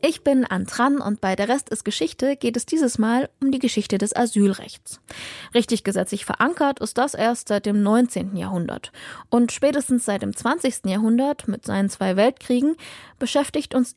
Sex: female